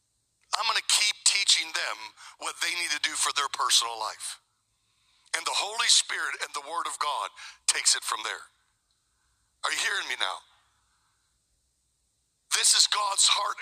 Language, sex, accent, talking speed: English, male, American, 165 wpm